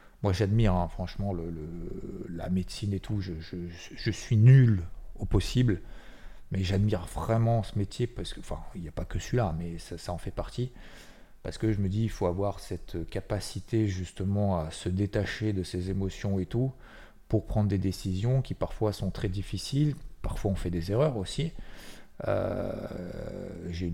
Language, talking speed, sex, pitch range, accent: French, 175 wpm, male, 90-110 Hz, French